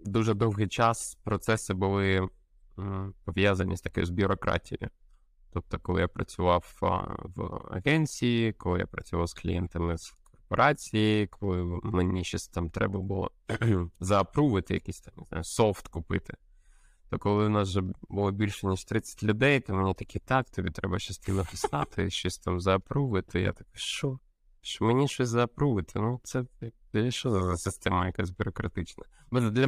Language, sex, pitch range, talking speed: Ukrainian, male, 90-110 Hz, 150 wpm